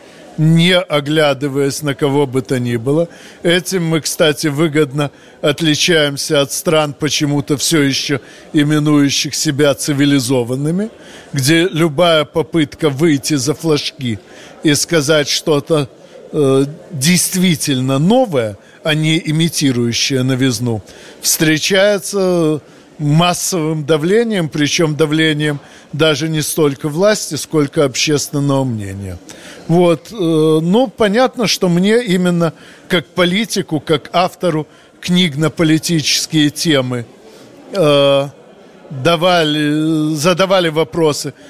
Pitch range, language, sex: 145-175 Hz, Russian, male